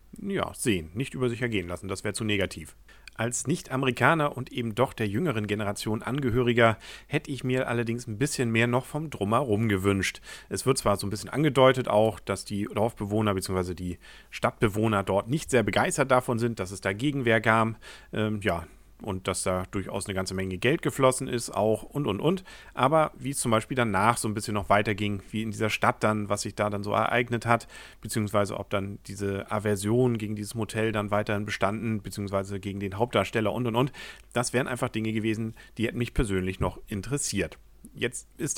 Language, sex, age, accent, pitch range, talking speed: German, male, 40-59, German, 100-120 Hz, 195 wpm